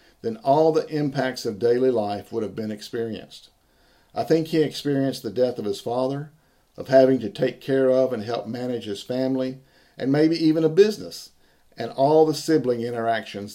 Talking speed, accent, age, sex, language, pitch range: 180 wpm, American, 50-69, male, English, 105-135 Hz